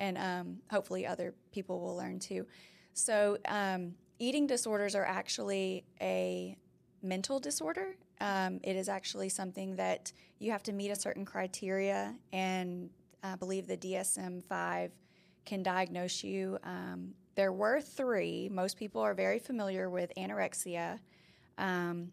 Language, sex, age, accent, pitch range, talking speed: English, female, 20-39, American, 180-200 Hz, 135 wpm